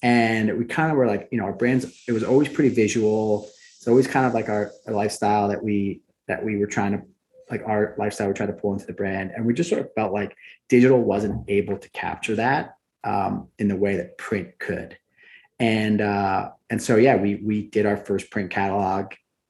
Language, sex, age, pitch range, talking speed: English, male, 30-49, 100-115 Hz, 220 wpm